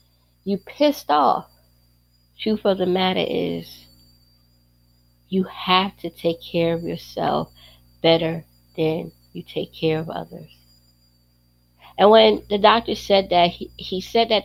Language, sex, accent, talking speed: English, female, American, 135 wpm